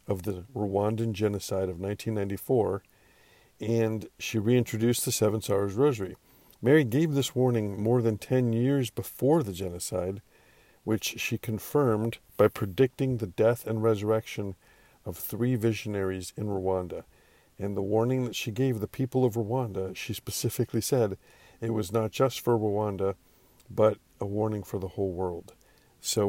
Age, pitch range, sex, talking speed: 50-69, 100-125 Hz, male, 150 wpm